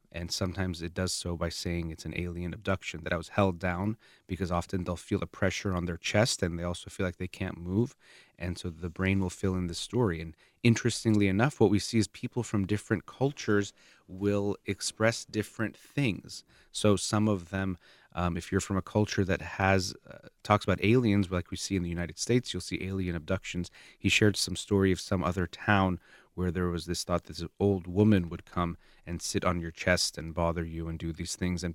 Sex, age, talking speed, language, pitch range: male, 30-49, 220 wpm, English, 85-100 Hz